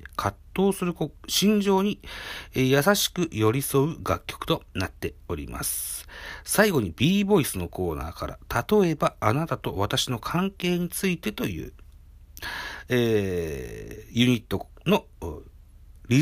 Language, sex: Japanese, male